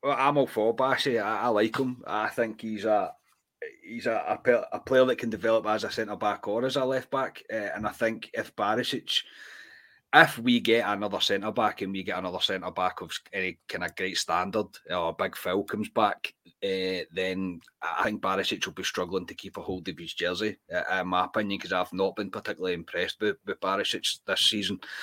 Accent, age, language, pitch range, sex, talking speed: British, 30-49, English, 95-120 Hz, male, 215 wpm